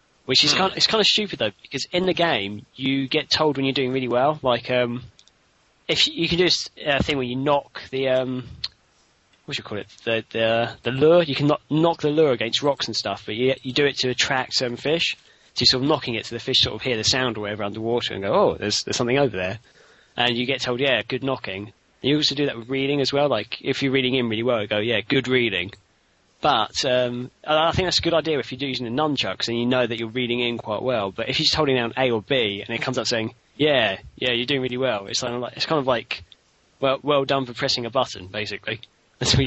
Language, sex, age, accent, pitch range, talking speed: English, male, 20-39, British, 115-140 Hz, 265 wpm